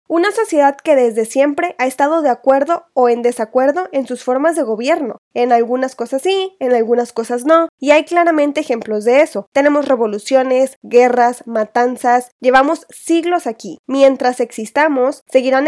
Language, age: Spanish, 20-39